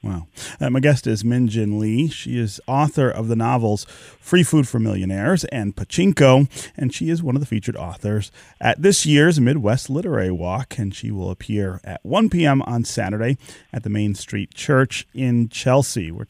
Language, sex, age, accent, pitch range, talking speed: English, male, 30-49, American, 100-130 Hz, 185 wpm